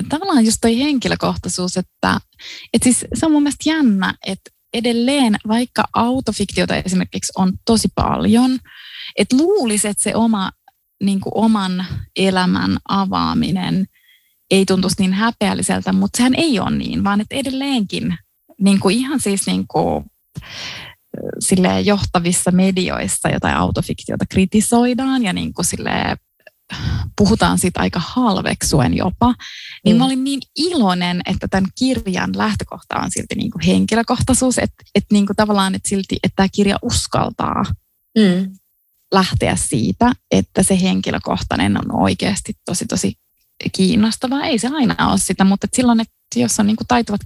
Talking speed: 125 wpm